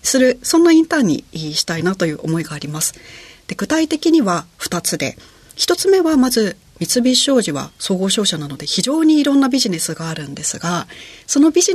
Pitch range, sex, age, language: 160-265 Hz, female, 40-59, Japanese